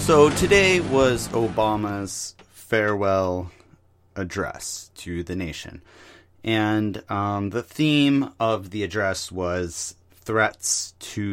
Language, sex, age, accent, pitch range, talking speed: English, male, 30-49, American, 95-115 Hz, 100 wpm